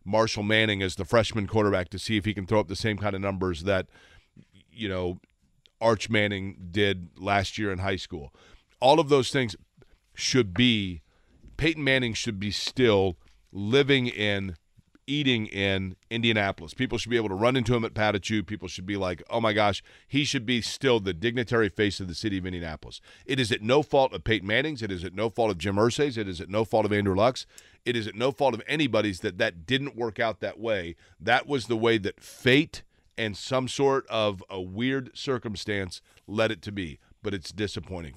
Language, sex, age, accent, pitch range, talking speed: English, male, 40-59, American, 95-115 Hz, 210 wpm